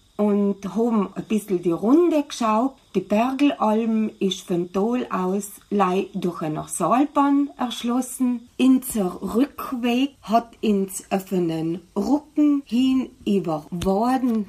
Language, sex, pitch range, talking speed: German, female, 190-255 Hz, 110 wpm